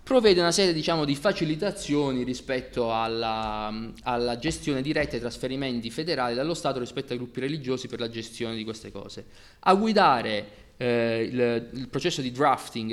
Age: 20-39